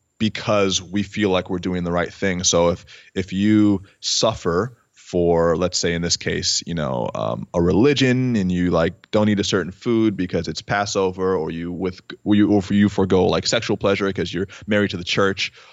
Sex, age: male, 20-39